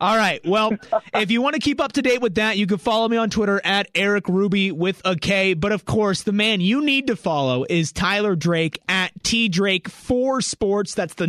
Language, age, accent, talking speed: English, 30-49, American, 235 wpm